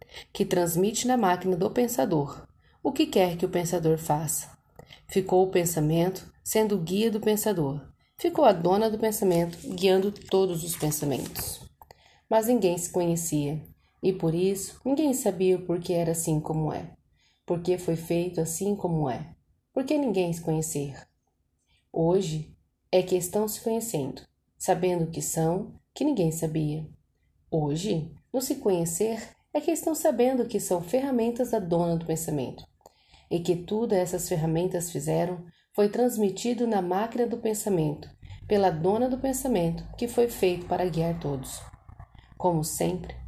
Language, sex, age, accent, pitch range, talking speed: Portuguese, female, 30-49, Brazilian, 160-215 Hz, 145 wpm